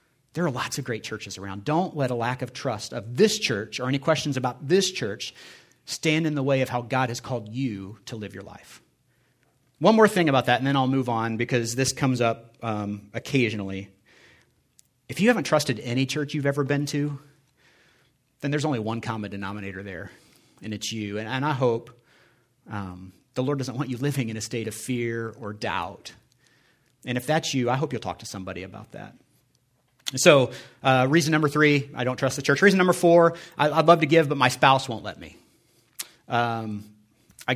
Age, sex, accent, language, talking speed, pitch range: 40-59, male, American, English, 205 wpm, 115-140 Hz